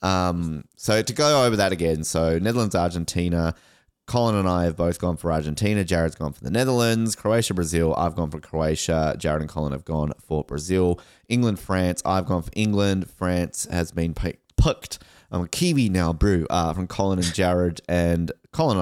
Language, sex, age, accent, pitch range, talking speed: English, male, 20-39, Australian, 80-105 Hz, 190 wpm